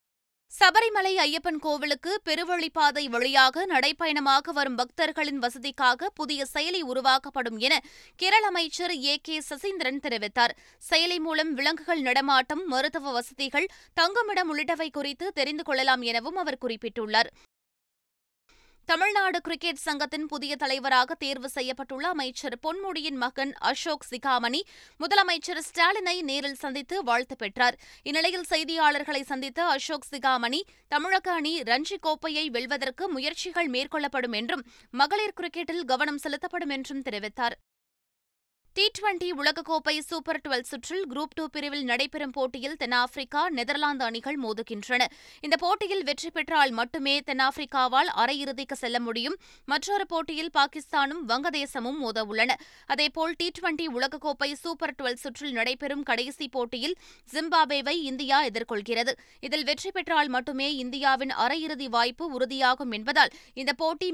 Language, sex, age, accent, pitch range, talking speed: Tamil, female, 20-39, native, 265-330 Hz, 115 wpm